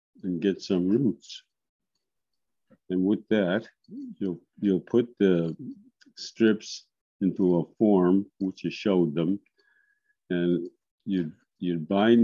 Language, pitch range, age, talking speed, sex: English, 90-105 Hz, 50-69, 115 wpm, male